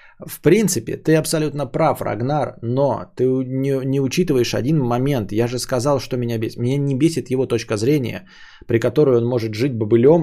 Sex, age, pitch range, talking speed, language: male, 20-39, 115-155 Hz, 180 wpm, Bulgarian